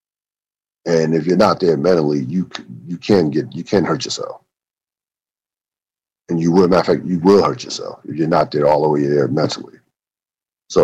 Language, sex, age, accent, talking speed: English, male, 50-69, American, 190 wpm